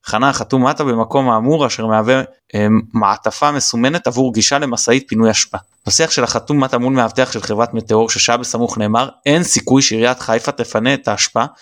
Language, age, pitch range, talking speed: Hebrew, 20-39, 110-135 Hz, 175 wpm